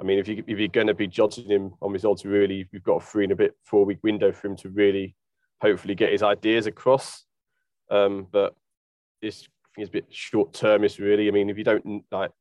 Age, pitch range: 20-39, 100-115 Hz